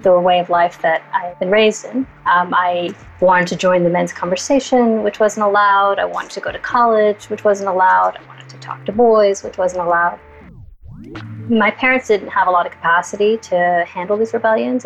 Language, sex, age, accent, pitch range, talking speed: English, female, 30-49, American, 175-205 Hz, 200 wpm